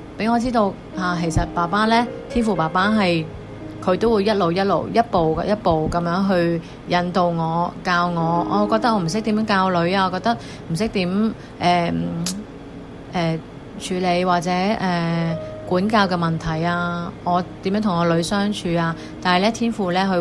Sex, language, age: female, Chinese, 30-49